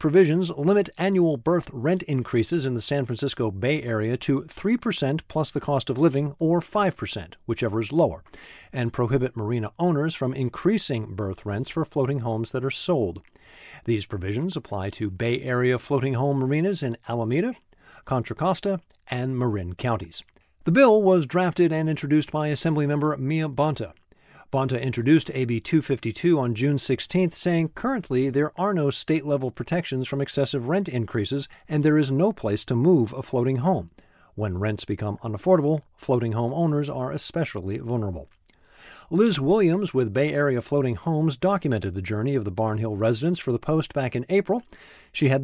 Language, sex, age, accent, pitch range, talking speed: English, male, 50-69, American, 120-160 Hz, 170 wpm